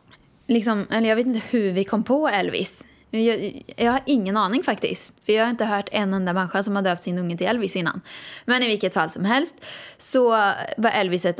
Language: Swedish